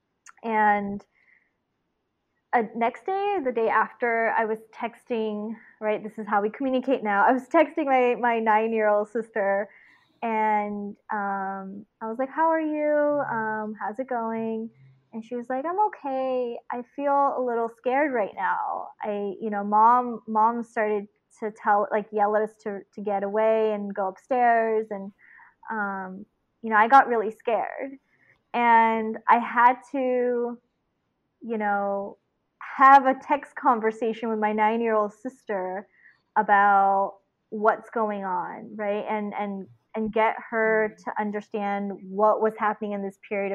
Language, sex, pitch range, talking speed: English, female, 210-250 Hz, 150 wpm